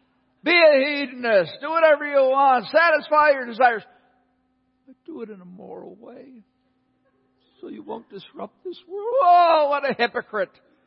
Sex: male